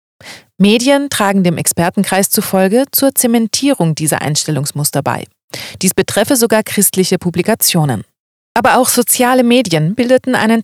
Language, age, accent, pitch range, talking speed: German, 30-49, German, 170-245 Hz, 120 wpm